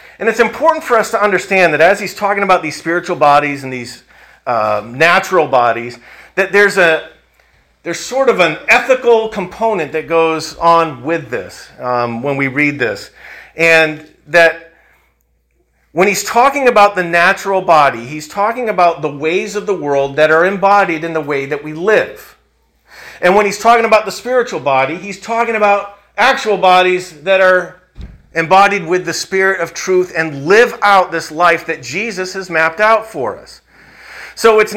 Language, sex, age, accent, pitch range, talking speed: English, male, 40-59, American, 160-215 Hz, 175 wpm